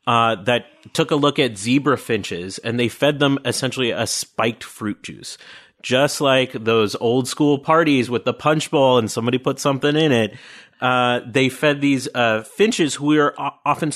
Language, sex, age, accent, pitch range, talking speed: English, male, 30-49, American, 105-140 Hz, 190 wpm